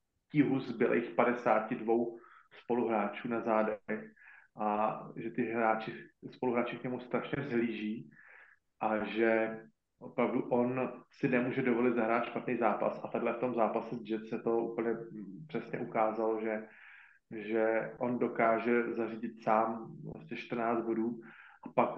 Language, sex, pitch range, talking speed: Slovak, male, 110-120 Hz, 125 wpm